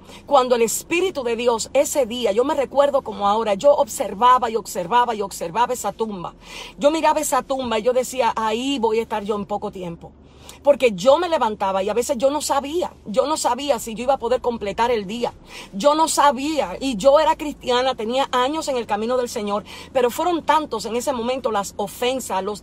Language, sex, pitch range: English, female, 215-270 Hz